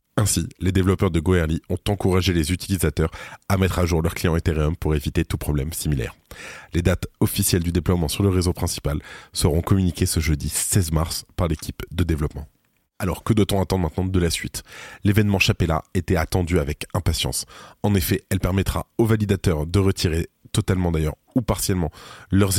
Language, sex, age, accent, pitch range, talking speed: French, male, 20-39, French, 85-95 Hz, 180 wpm